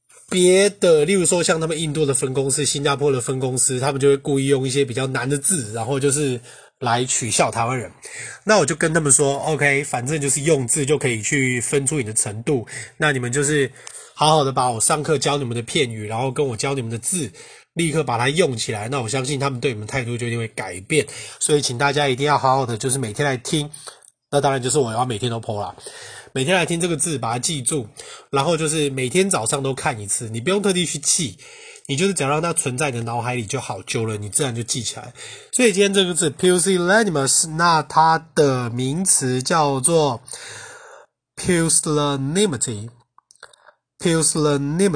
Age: 20-39